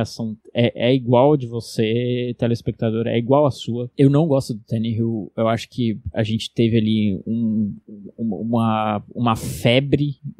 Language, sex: Portuguese, male